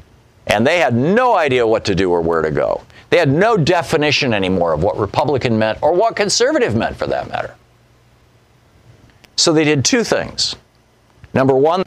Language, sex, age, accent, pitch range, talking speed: English, male, 50-69, American, 100-130 Hz, 175 wpm